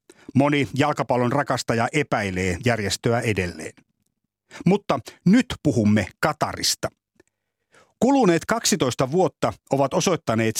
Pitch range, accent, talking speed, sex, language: 115-150 Hz, native, 85 wpm, male, Finnish